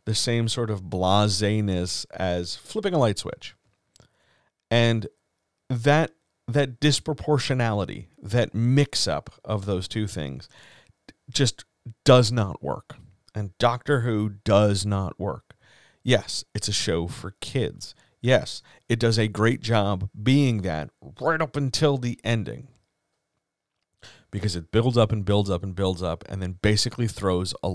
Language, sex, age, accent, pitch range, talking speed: English, male, 40-59, American, 100-125 Hz, 140 wpm